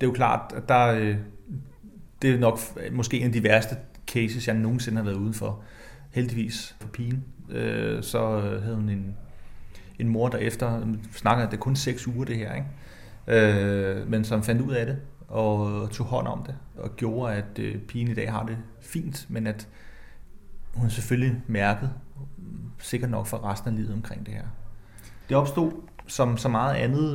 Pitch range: 105-125 Hz